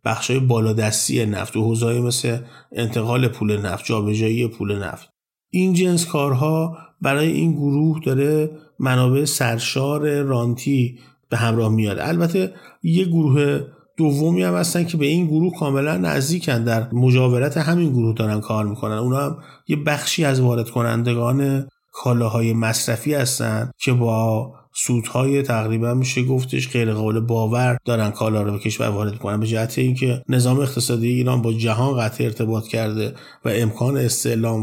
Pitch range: 115-140 Hz